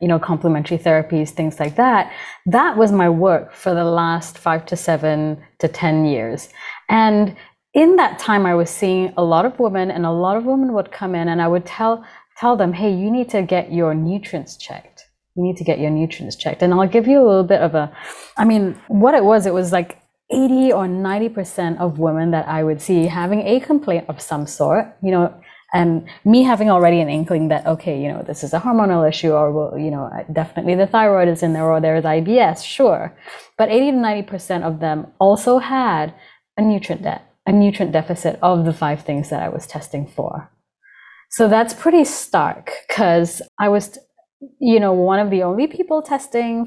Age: 30-49